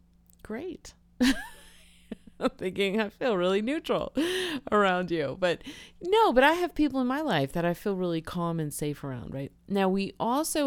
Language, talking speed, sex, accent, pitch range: English, 170 wpm, female, American, 145-200 Hz